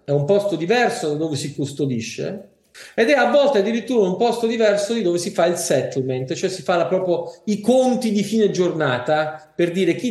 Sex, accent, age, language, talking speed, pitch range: male, native, 40-59, Italian, 200 wpm, 140-200 Hz